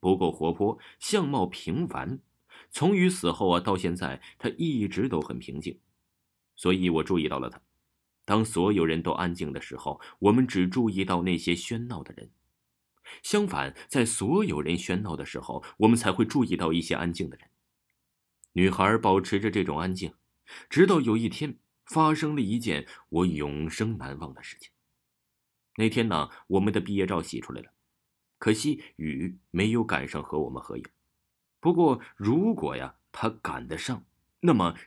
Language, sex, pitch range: Chinese, male, 80-115 Hz